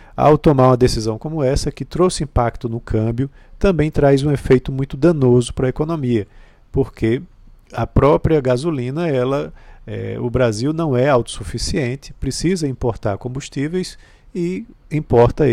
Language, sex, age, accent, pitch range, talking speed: Portuguese, male, 50-69, Brazilian, 115-150 Hz, 140 wpm